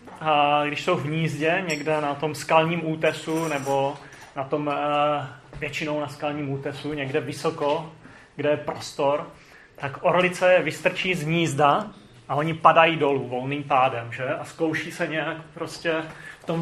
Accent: native